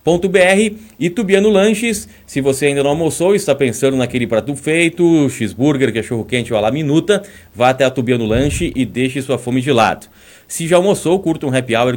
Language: Portuguese